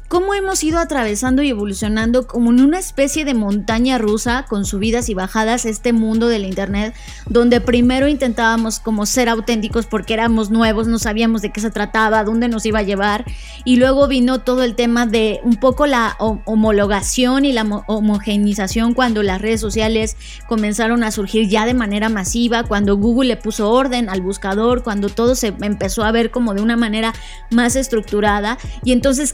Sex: female